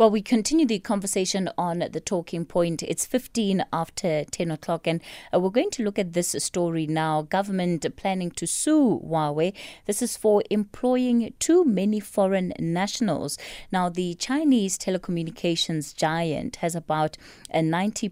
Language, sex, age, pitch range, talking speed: English, female, 20-39, 155-195 Hz, 145 wpm